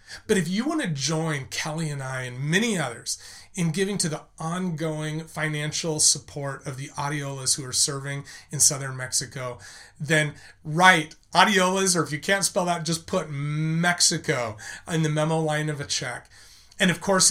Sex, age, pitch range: male, 30-49, 140-165 Hz